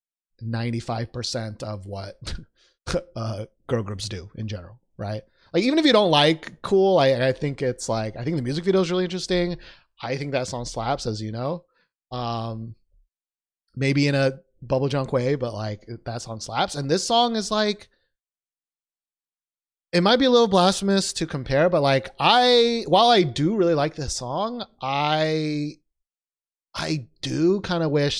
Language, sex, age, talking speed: English, male, 30-49, 170 wpm